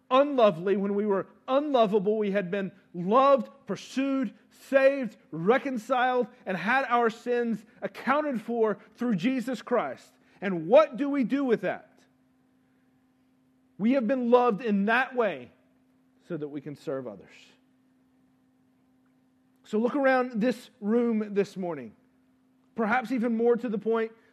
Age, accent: 40-59, American